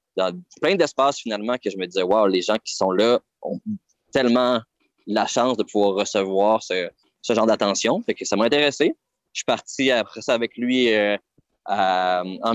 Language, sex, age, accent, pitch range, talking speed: French, male, 20-39, Canadian, 100-120 Hz, 190 wpm